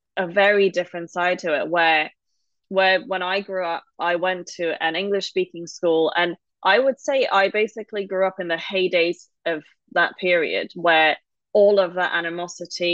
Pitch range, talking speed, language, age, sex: 170-200 Hz, 170 wpm, English, 20-39, female